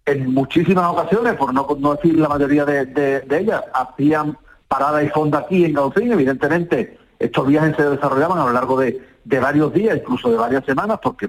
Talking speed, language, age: 195 wpm, Spanish, 40-59